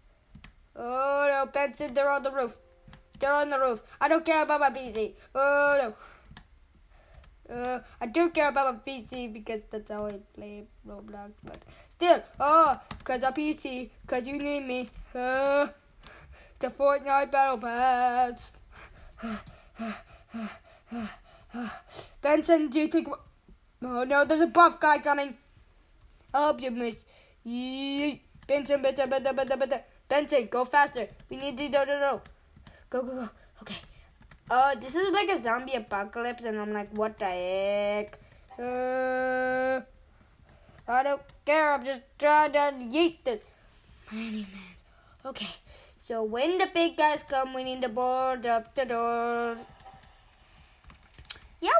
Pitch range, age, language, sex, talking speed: 235-290 Hz, 20-39, English, female, 135 wpm